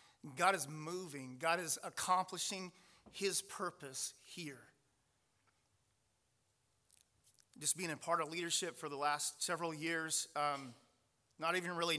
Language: English